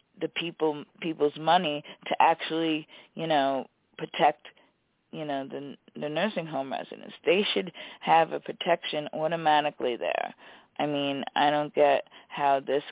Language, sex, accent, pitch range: English, female, American, 145-160 Hz